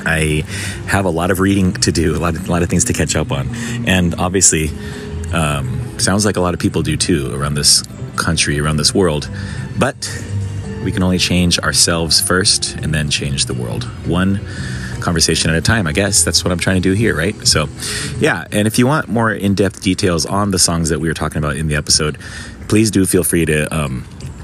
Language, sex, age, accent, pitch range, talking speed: English, male, 30-49, American, 80-100 Hz, 215 wpm